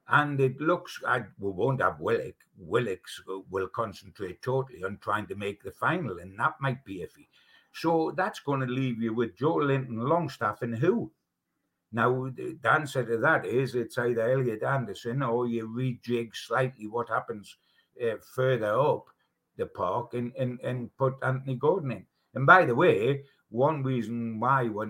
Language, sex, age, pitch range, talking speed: English, male, 60-79, 115-135 Hz, 170 wpm